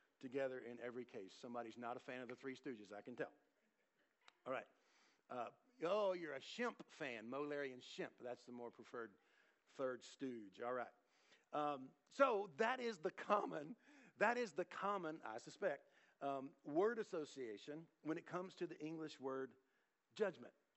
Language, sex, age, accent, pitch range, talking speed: English, male, 50-69, American, 125-170 Hz, 160 wpm